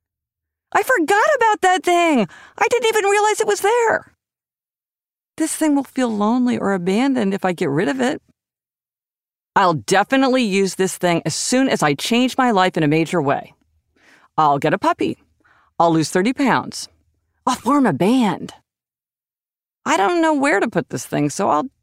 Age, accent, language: 50-69, American, English